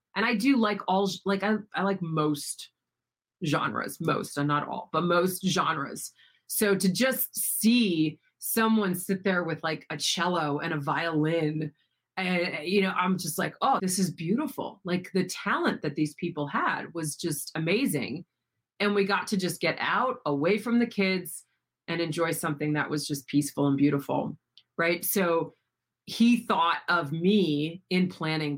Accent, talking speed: American, 170 wpm